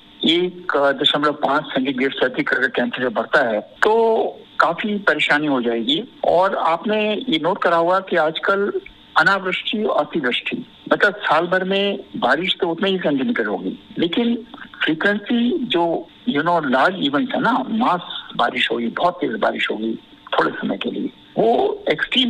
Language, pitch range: English, 145-215 Hz